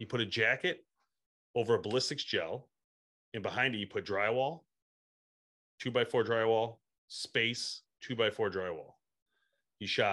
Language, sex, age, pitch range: English, male, 30-49, 105-140 Hz